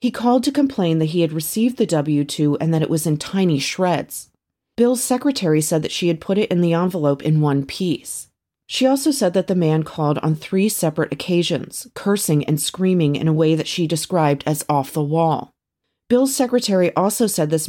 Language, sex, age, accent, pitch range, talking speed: English, female, 30-49, American, 155-200 Hz, 205 wpm